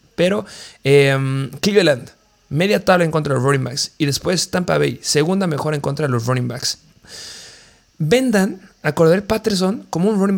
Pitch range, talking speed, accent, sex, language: 135-190 Hz, 175 wpm, Mexican, male, Spanish